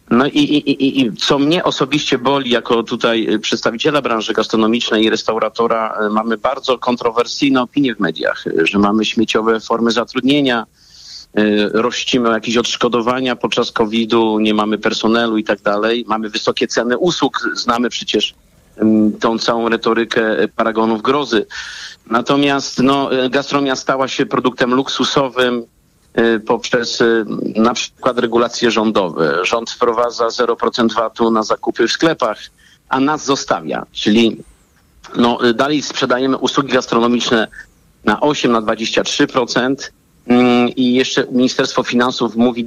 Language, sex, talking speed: Polish, male, 120 wpm